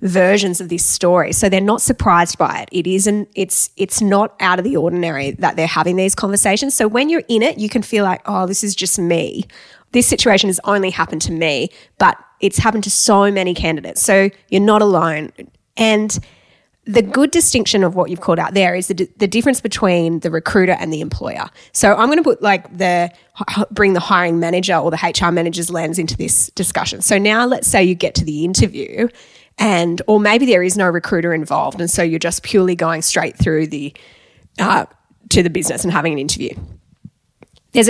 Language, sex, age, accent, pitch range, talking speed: English, female, 20-39, Australian, 170-210 Hz, 205 wpm